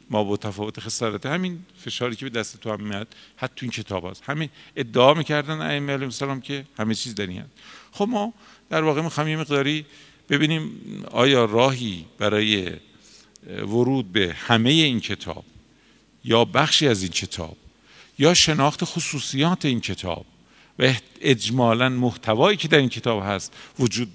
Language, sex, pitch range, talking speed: Persian, male, 115-165 Hz, 145 wpm